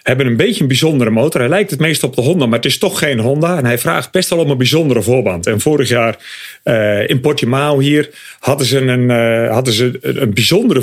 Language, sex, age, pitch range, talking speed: English, male, 40-59, 125-160 Hz, 220 wpm